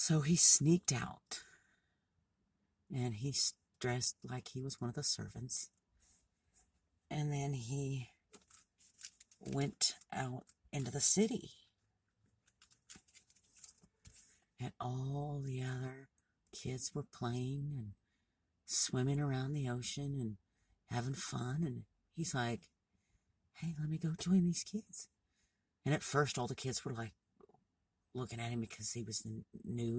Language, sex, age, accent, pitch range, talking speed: English, female, 50-69, American, 100-135 Hz, 125 wpm